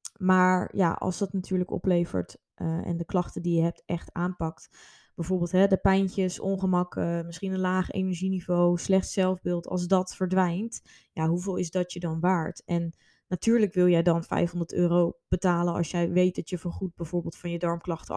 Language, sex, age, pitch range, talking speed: Dutch, female, 20-39, 175-195 Hz, 180 wpm